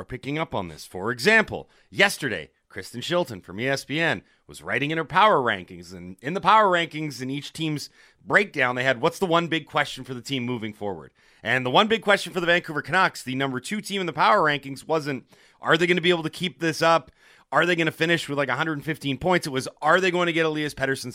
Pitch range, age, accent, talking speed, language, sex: 115-165 Hz, 30-49, American, 240 wpm, English, male